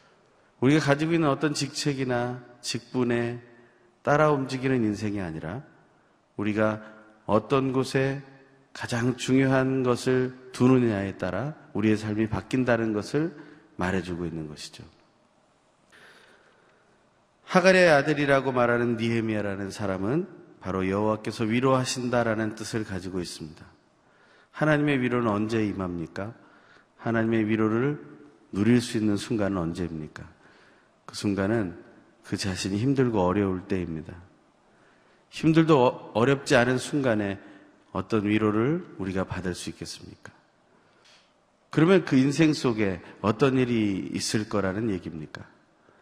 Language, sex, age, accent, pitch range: Korean, male, 40-59, native, 100-130 Hz